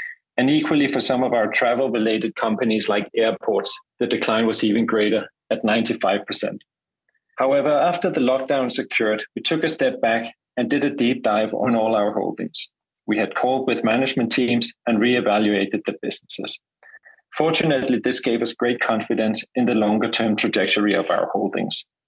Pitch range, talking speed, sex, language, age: 110-135 Hz, 160 wpm, male, English, 30-49